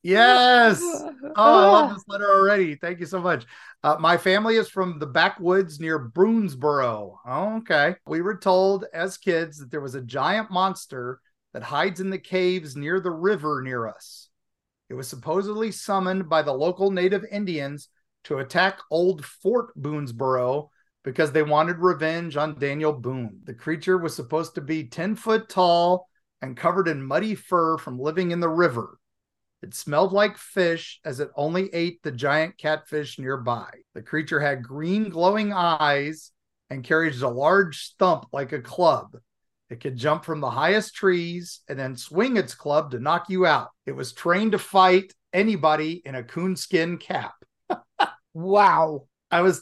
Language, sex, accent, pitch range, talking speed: English, male, American, 150-195 Hz, 165 wpm